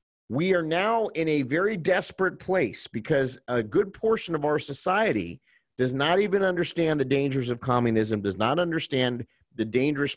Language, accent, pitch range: English, American, 110-165 Hz